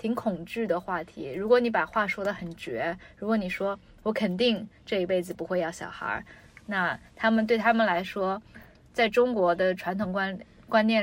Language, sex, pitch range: Chinese, female, 185-225 Hz